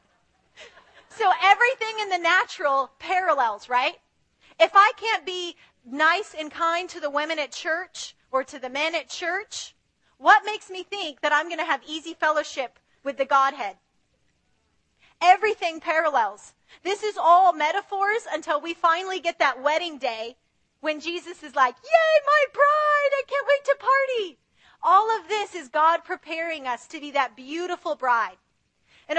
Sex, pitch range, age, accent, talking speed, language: female, 275-340 Hz, 30-49, American, 160 wpm, English